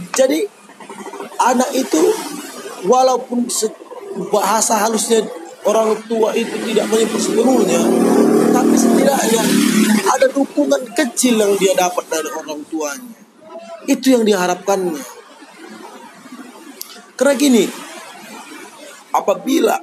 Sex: male